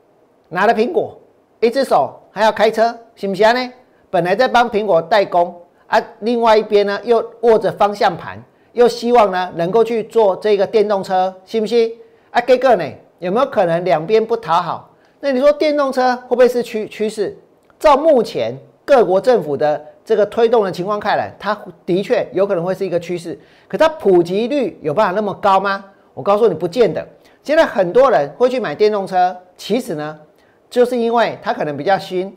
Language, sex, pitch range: Chinese, male, 195-250 Hz